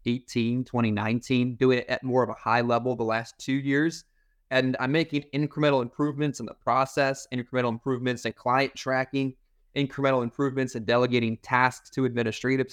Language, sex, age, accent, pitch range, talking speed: English, male, 20-39, American, 125-150 Hz, 170 wpm